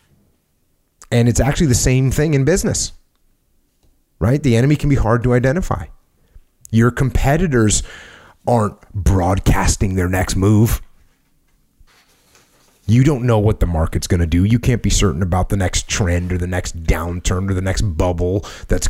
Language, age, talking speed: English, 30-49, 150 wpm